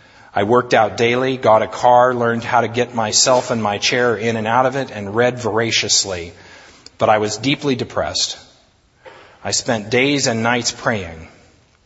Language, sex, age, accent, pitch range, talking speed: English, male, 40-59, American, 115-150 Hz, 170 wpm